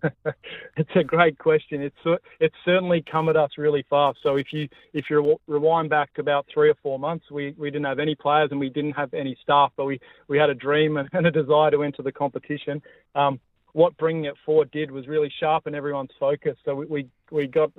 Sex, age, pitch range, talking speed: male, 30-49, 140-155 Hz, 220 wpm